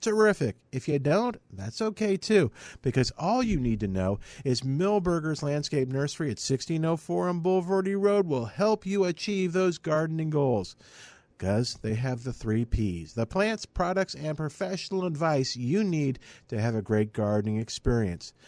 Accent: American